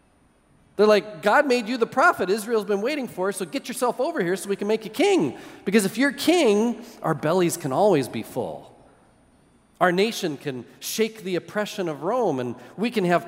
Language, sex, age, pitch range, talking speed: English, male, 40-59, 155-220 Hz, 200 wpm